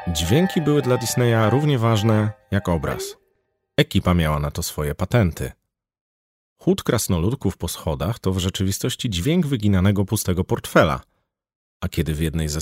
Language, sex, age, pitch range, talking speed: Polish, male, 30-49, 85-115 Hz, 145 wpm